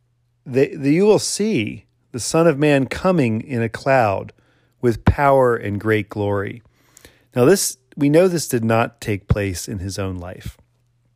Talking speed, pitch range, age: 155 wpm, 105-130 Hz, 40-59